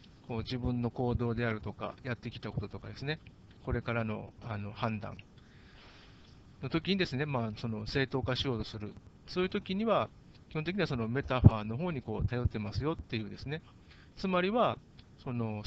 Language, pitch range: Japanese, 110-155 Hz